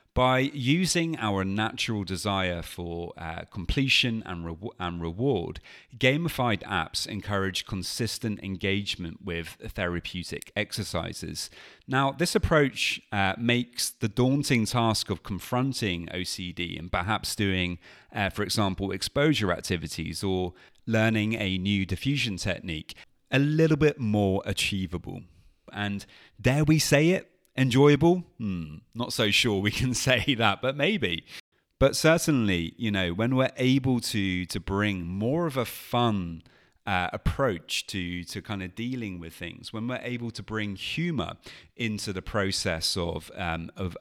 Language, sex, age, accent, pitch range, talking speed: English, male, 30-49, British, 90-120 Hz, 135 wpm